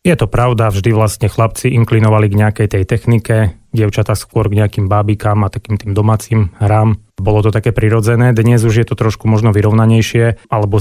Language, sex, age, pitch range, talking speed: Slovak, male, 30-49, 105-115 Hz, 185 wpm